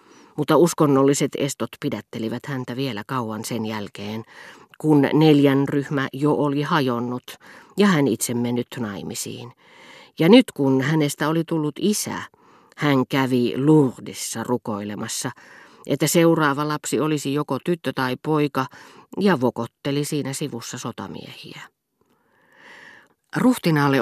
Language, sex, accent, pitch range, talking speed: Finnish, female, native, 120-150 Hz, 110 wpm